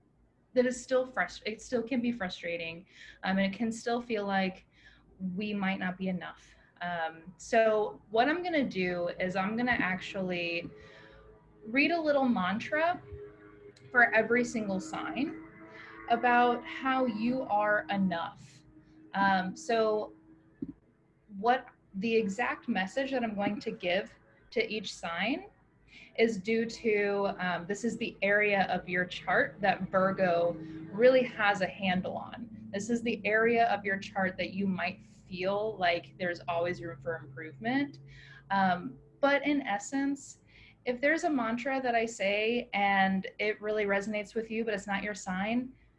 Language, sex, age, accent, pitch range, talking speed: English, female, 20-39, American, 180-240 Hz, 155 wpm